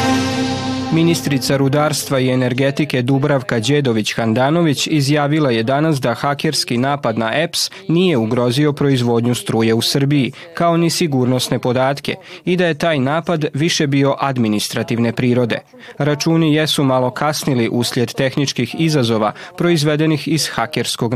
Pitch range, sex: 120-150 Hz, male